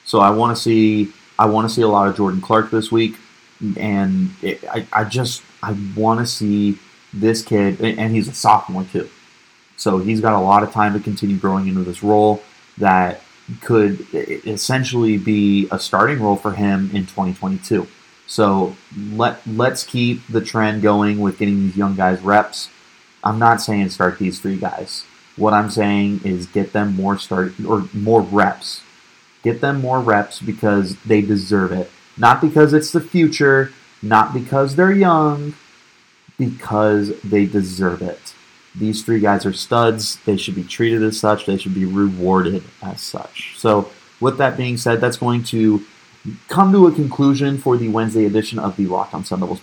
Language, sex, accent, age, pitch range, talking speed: English, male, American, 30-49, 100-115 Hz, 180 wpm